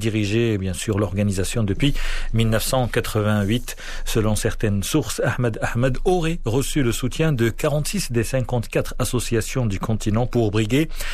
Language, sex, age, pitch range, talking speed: Arabic, male, 40-59, 110-140 Hz, 130 wpm